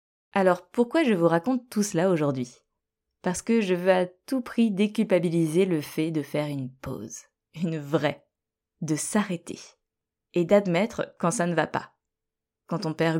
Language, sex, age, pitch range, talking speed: French, female, 20-39, 165-210 Hz, 165 wpm